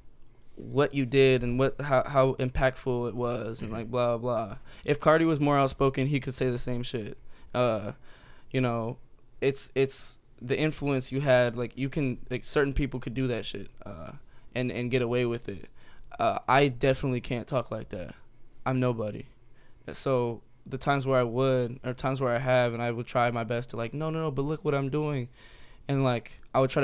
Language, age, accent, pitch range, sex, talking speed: English, 10-29, American, 120-135 Hz, male, 205 wpm